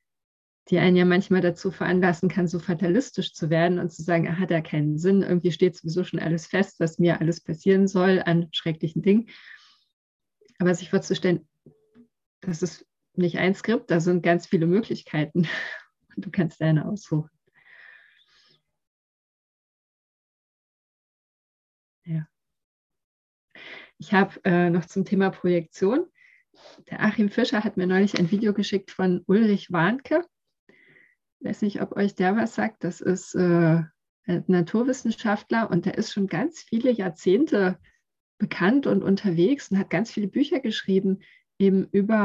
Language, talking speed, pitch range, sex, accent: German, 140 wpm, 175-210 Hz, female, German